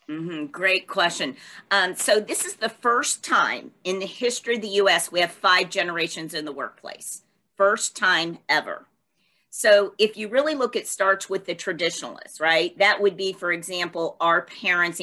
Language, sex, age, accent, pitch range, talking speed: English, female, 40-59, American, 170-215 Hz, 175 wpm